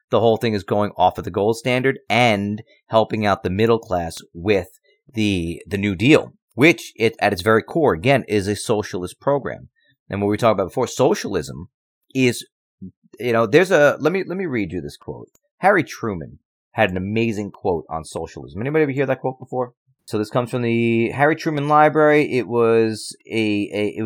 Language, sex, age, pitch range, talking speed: English, male, 30-49, 105-130 Hz, 195 wpm